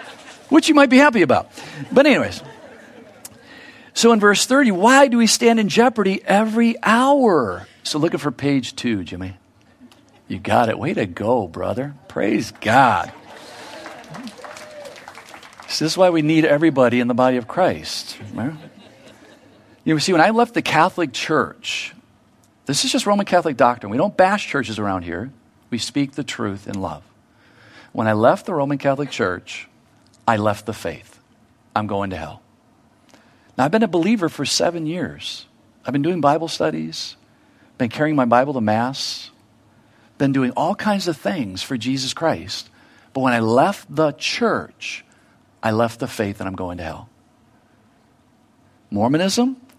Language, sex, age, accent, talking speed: English, male, 50-69, American, 160 wpm